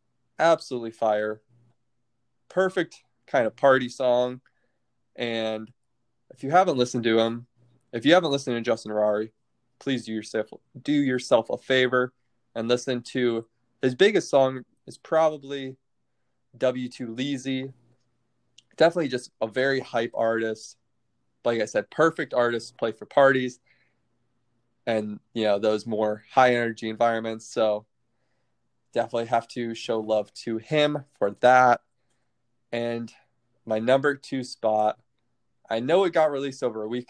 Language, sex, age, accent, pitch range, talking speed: English, male, 20-39, American, 115-130 Hz, 135 wpm